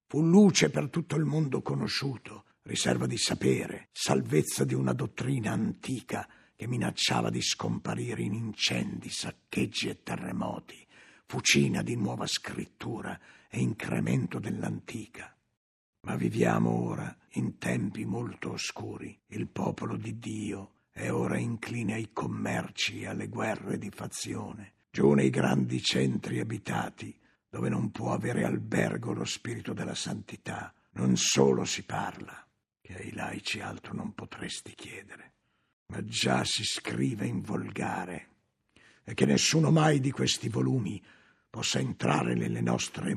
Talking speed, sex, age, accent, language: 130 wpm, male, 60-79, native, Italian